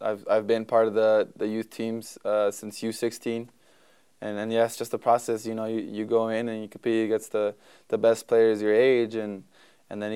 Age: 20-39